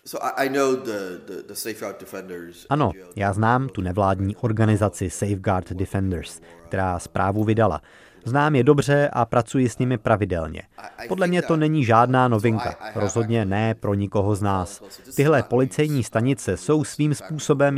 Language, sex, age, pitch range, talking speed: Czech, male, 30-49, 105-130 Hz, 125 wpm